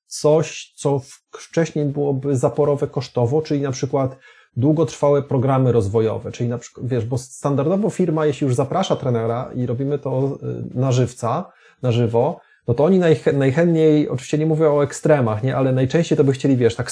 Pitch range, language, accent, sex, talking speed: 120-155 Hz, Polish, native, male, 165 wpm